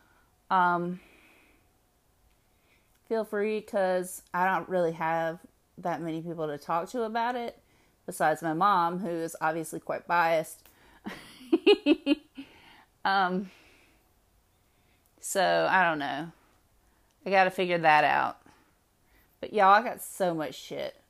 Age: 30-49